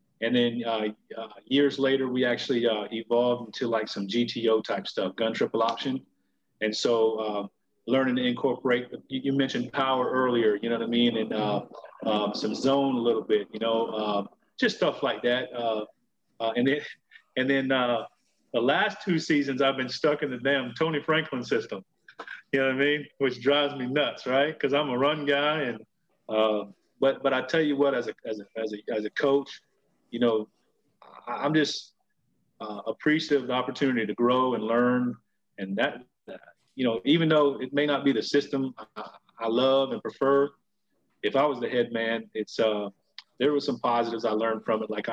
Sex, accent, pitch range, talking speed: male, American, 110-135 Hz, 200 wpm